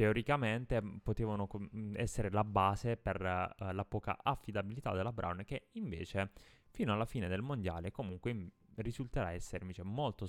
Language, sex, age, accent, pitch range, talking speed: Italian, male, 20-39, native, 95-110 Hz, 140 wpm